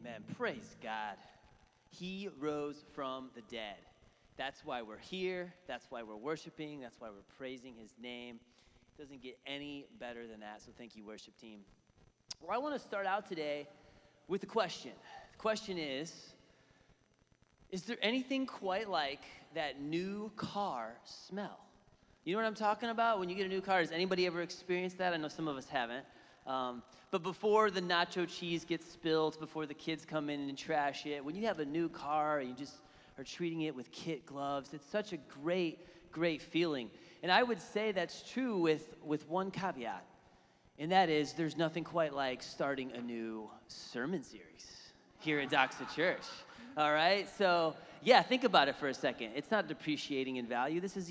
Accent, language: American, English